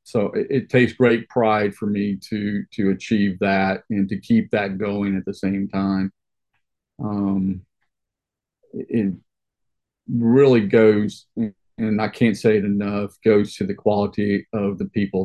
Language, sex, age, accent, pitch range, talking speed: English, male, 40-59, American, 95-105 Hz, 150 wpm